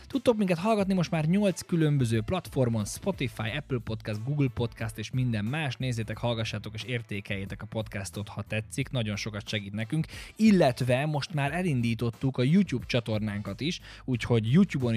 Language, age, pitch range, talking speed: Hungarian, 20-39, 105-125 Hz, 150 wpm